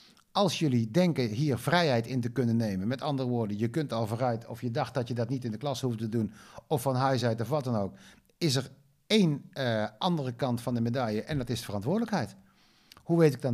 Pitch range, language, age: 115-160 Hz, Dutch, 50-69